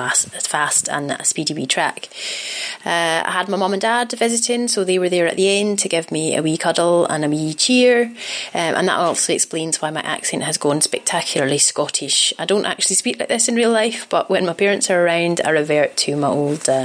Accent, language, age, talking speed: British, English, 30-49, 220 wpm